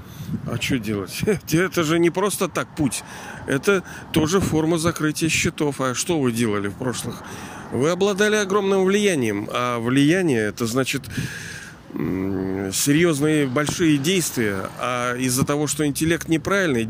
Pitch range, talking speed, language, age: 115-160 Hz, 130 wpm, Russian, 40-59